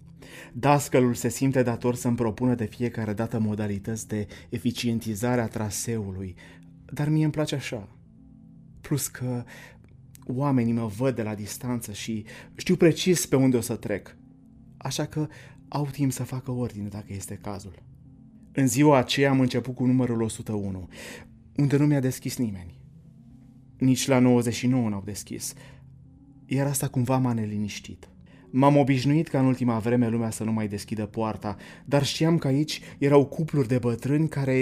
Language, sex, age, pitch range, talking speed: Romanian, male, 30-49, 110-140 Hz, 155 wpm